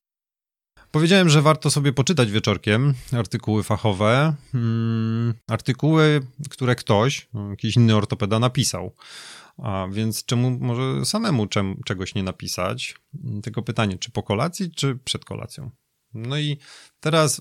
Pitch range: 105-125 Hz